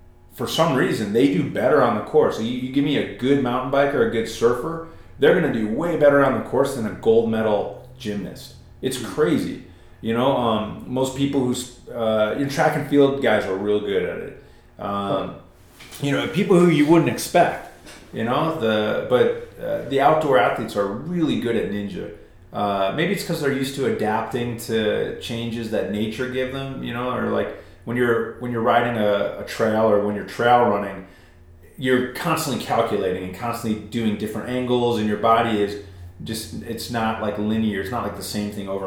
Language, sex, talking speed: English, male, 195 wpm